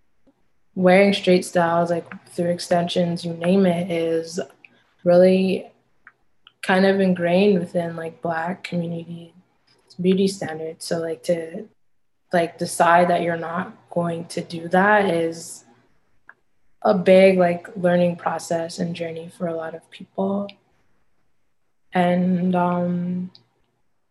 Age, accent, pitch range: 20-39, American, 170-185 Hz